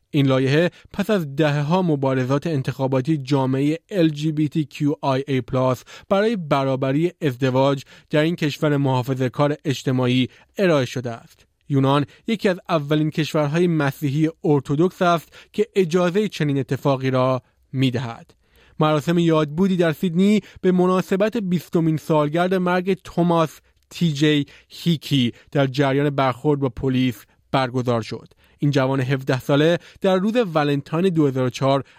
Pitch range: 135-170 Hz